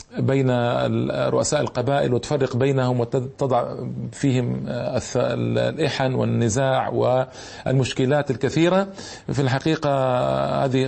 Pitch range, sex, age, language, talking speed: 125-145 Hz, male, 40-59, Arabic, 75 wpm